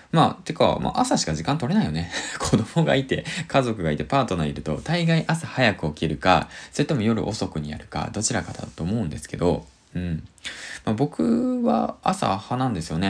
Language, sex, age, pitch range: Japanese, male, 20-39, 85-120 Hz